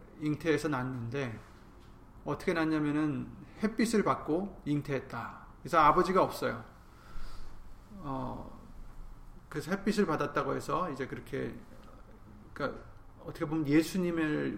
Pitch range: 125-170 Hz